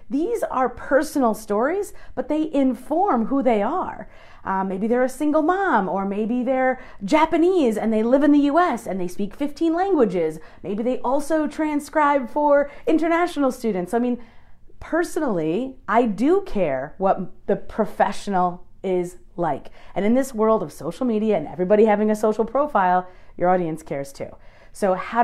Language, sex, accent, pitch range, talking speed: English, female, American, 185-255 Hz, 160 wpm